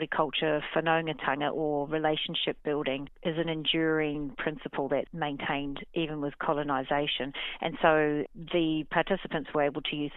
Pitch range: 140-160 Hz